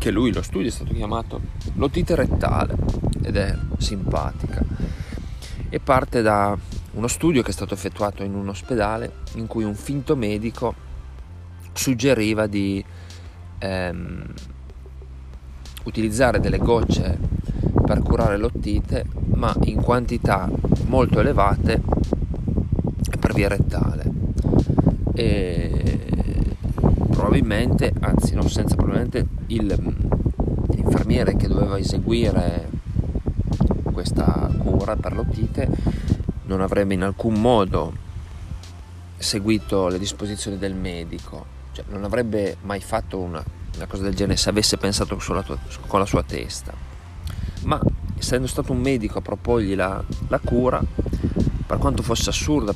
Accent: native